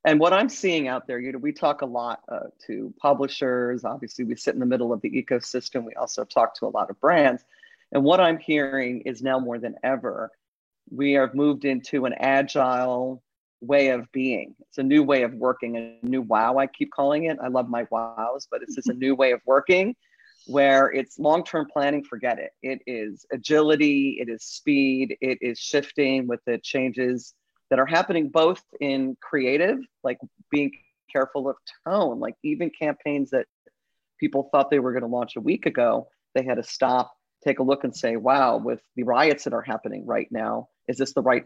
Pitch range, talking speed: 125-145 Hz, 200 wpm